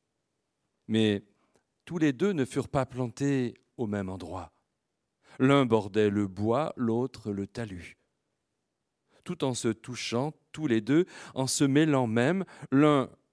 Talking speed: 135 wpm